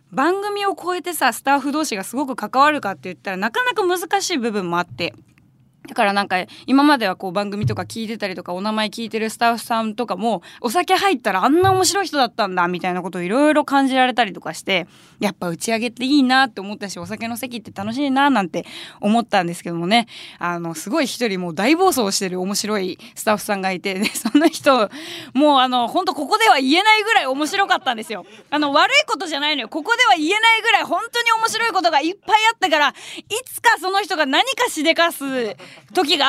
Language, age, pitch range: Japanese, 20-39, 210-335 Hz